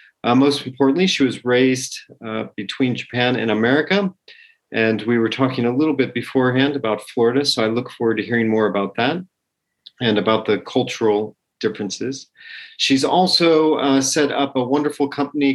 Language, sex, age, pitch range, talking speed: English, male, 40-59, 120-150 Hz, 165 wpm